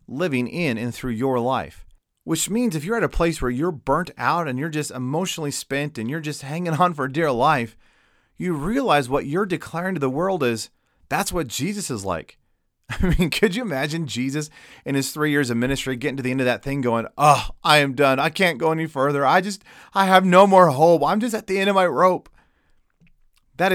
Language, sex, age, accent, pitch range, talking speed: English, male, 30-49, American, 130-180 Hz, 225 wpm